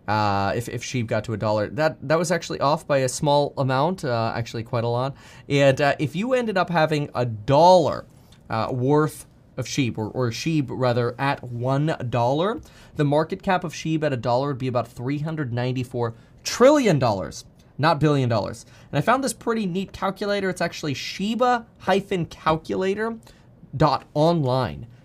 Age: 20-39